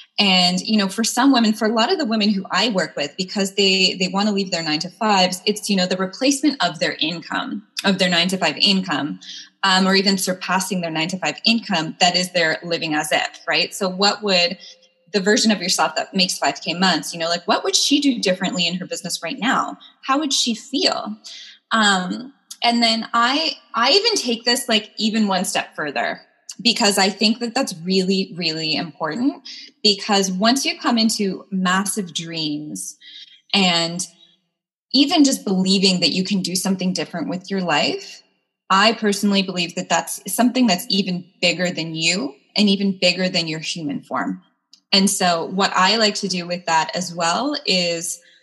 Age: 20-39